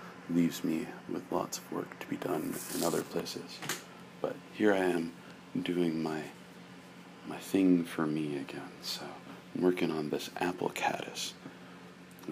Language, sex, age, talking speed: English, male, 40-59, 150 wpm